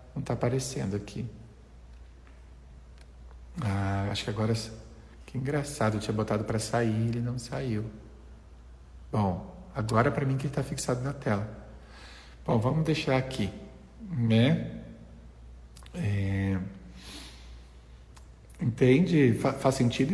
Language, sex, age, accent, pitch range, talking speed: Portuguese, male, 50-69, Brazilian, 105-130 Hz, 115 wpm